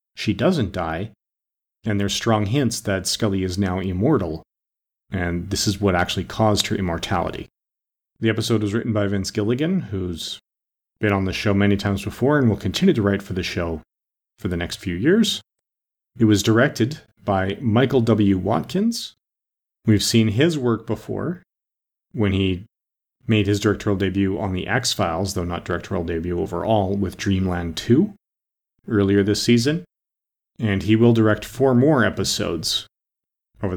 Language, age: English, 40-59